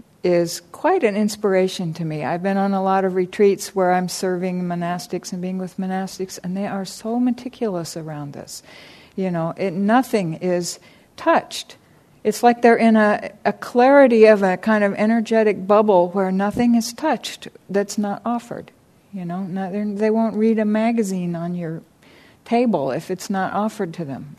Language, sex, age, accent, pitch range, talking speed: English, female, 60-79, American, 185-225 Hz, 170 wpm